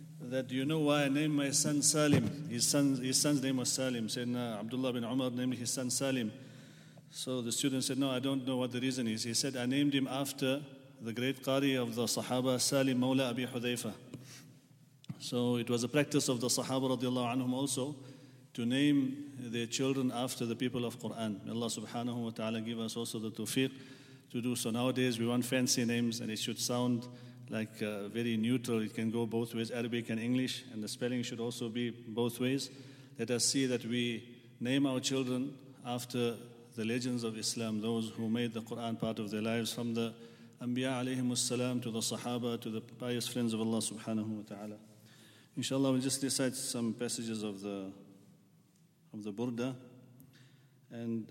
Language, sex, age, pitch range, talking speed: English, male, 40-59, 115-130 Hz, 190 wpm